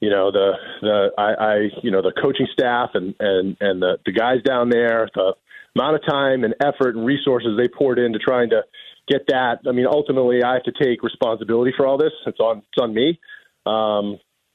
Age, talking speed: 30-49, 210 wpm